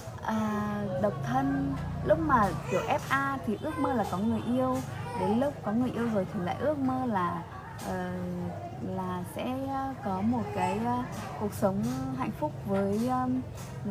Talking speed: 165 wpm